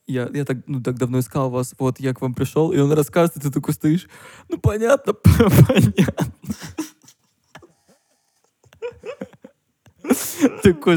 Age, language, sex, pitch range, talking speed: 20-39, Russian, male, 125-160 Hz, 130 wpm